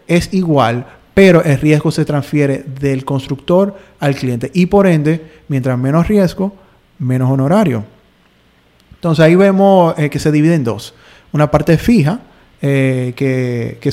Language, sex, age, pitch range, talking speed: Spanish, male, 30-49, 130-160 Hz, 145 wpm